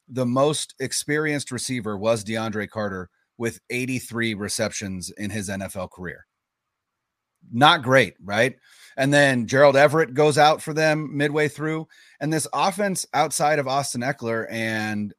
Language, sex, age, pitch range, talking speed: English, male, 30-49, 115-155 Hz, 140 wpm